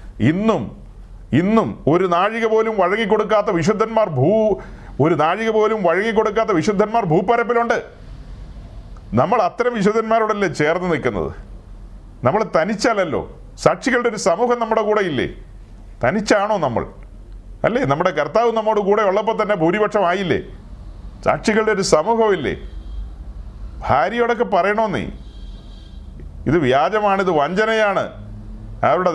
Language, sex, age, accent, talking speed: Malayalam, male, 40-59, native, 105 wpm